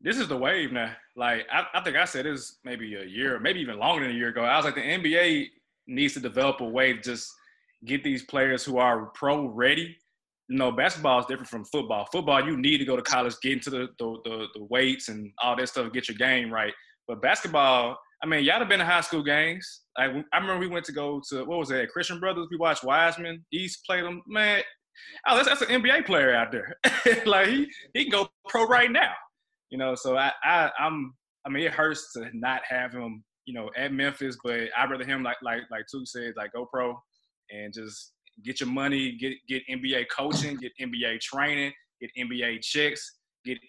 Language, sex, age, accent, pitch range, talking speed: English, male, 20-39, American, 120-165 Hz, 225 wpm